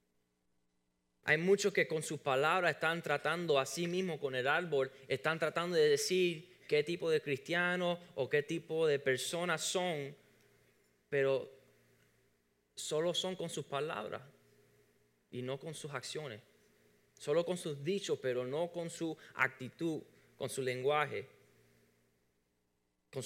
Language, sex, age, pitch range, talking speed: Spanish, male, 20-39, 110-160 Hz, 135 wpm